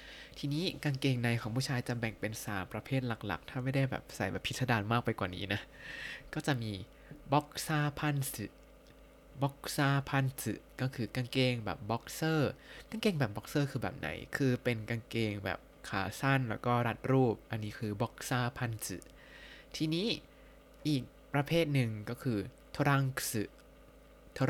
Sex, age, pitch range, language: male, 20-39, 115-140 Hz, Thai